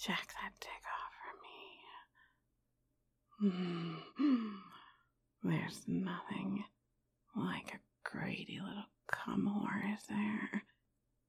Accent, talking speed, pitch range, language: American, 90 wpm, 210-265 Hz, English